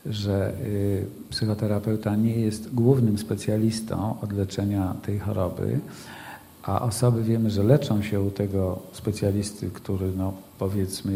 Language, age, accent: Polish, 50-69, native